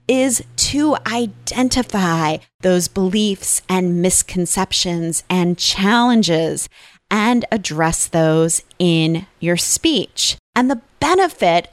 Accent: American